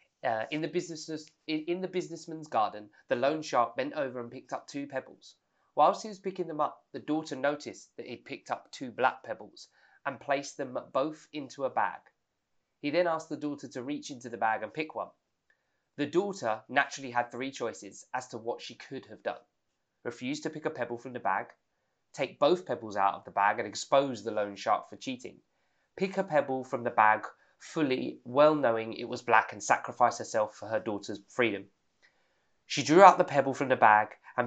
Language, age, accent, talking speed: English, 20-39, British, 205 wpm